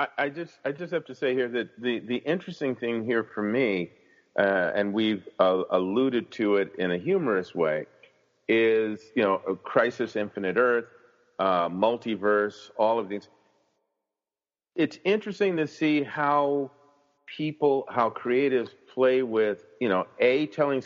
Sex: male